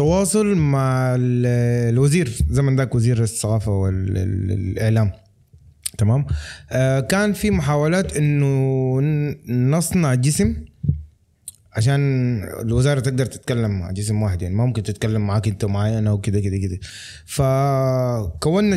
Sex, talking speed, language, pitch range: male, 110 wpm, Arabic, 115-150 Hz